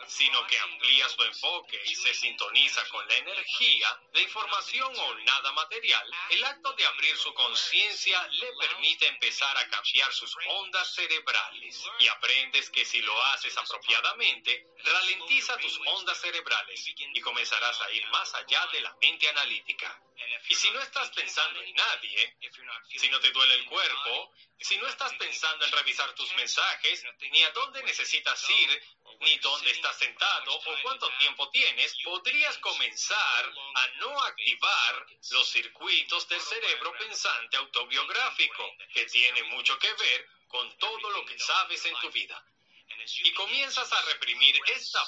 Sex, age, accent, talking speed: male, 30-49, Mexican, 150 wpm